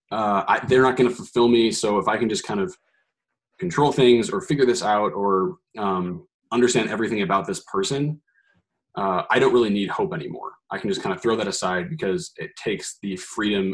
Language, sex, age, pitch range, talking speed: English, male, 20-39, 115-185 Hz, 205 wpm